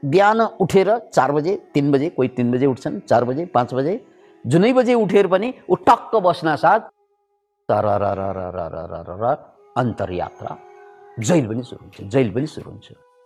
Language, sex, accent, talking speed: English, male, Indian, 125 wpm